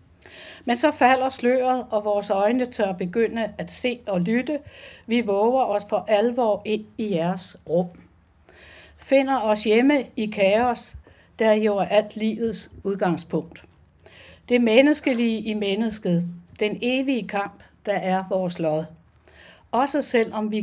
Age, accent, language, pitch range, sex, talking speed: 60-79, native, Danish, 195-240 Hz, female, 135 wpm